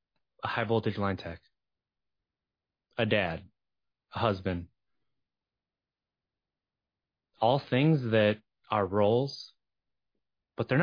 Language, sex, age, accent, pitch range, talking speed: English, male, 30-49, American, 105-135 Hz, 85 wpm